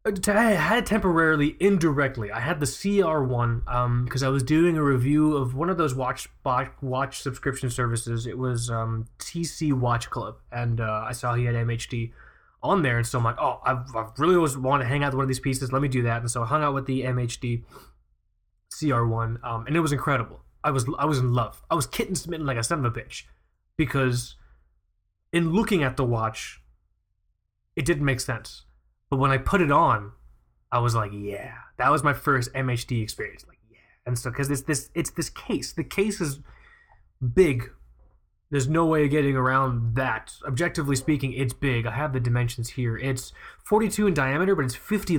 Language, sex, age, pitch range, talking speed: English, male, 20-39, 115-155 Hz, 205 wpm